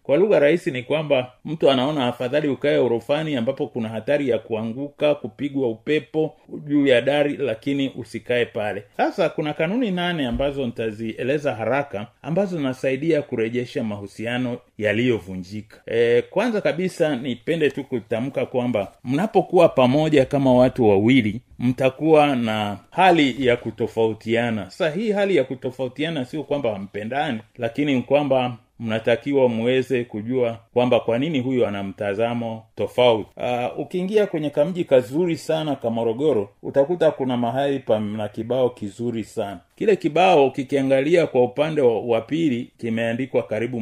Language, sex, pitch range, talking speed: Swahili, male, 115-150 Hz, 130 wpm